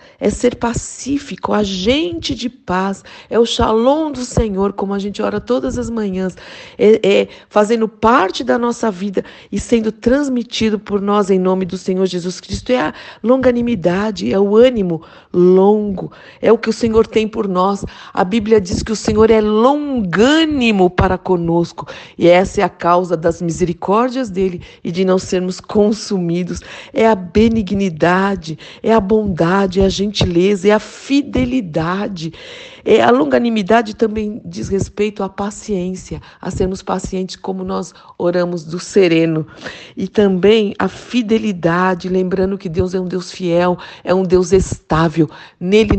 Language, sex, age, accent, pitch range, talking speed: Portuguese, female, 50-69, Brazilian, 185-220 Hz, 155 wpm